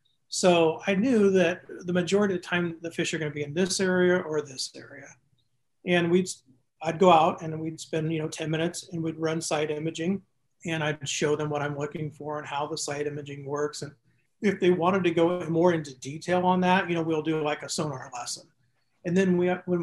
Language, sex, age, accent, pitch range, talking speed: English, male, 40-59, American, 145-175 Hz, 225 wpm